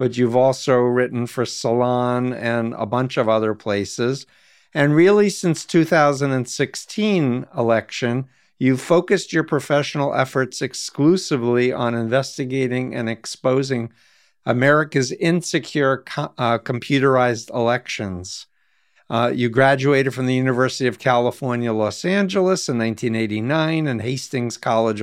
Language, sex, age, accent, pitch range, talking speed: English, male, 50-69, American, 120-145 Hz, 115 wpm